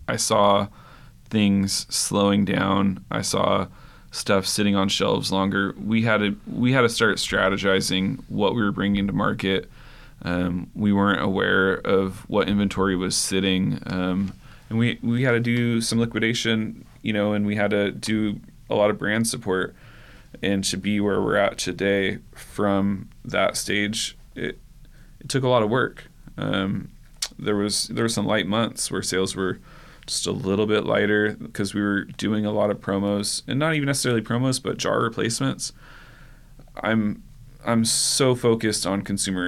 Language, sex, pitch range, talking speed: English, male, 100-115 Hz, 170 wpm